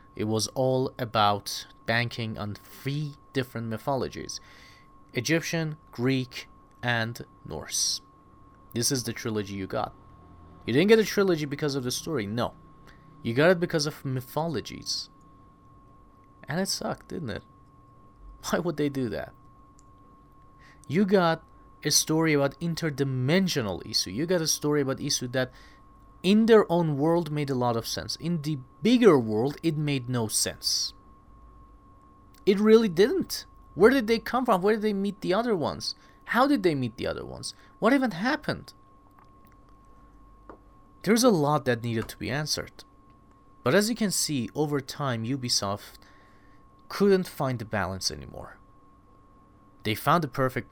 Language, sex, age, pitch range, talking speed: English, male, 30-49, 100-155 Hz, 150 wpm